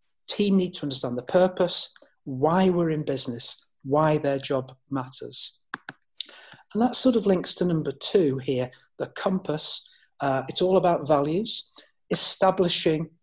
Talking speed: 140 wpm